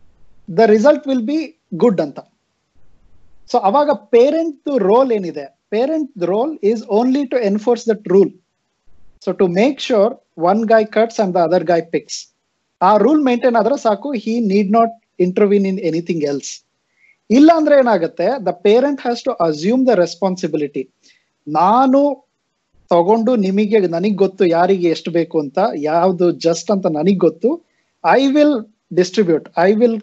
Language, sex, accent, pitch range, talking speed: Kannada, male, native, 175-240 Hz, 145 wpm